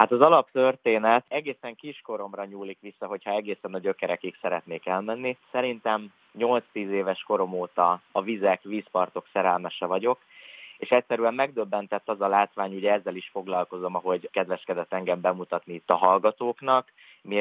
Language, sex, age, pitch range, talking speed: Hungarian, male, 20-39, 95-115 Hz, 140 wpm